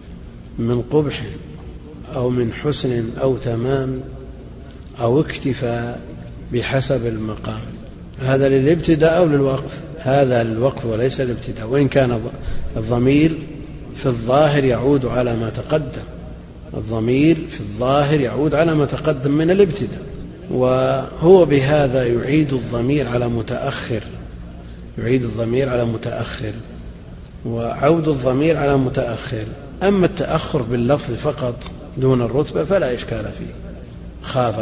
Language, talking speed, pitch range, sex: Arabic, 105 wpm, 110-140 Hz, male